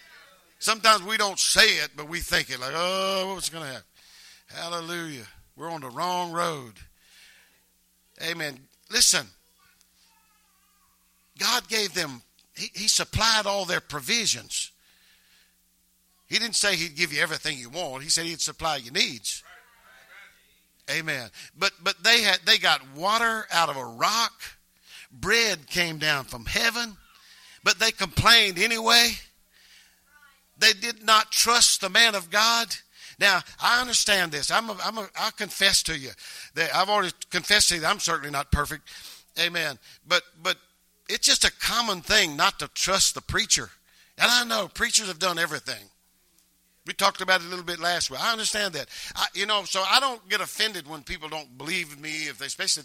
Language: English